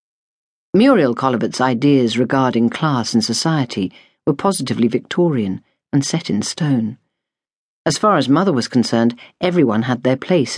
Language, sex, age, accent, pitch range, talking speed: English, female, 50-69, British, 115-160 Hz, 135 wpm